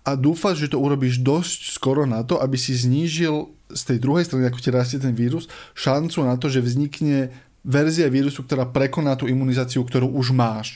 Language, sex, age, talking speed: Slovak, male, 20-39, 195 wpm